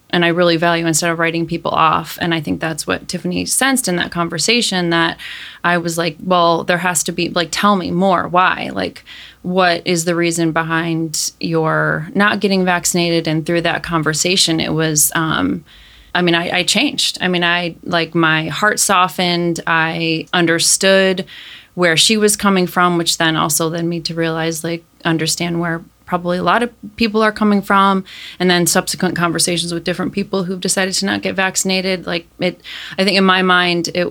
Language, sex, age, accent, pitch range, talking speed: English, female, 20-39, American, 165-190 Hz, 190 wpm